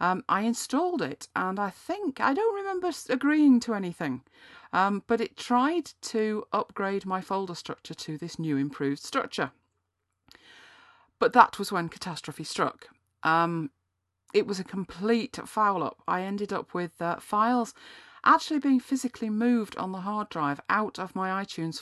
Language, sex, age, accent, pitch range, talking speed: English, female, 40-59, British, 170-235 Hz, 160 wpm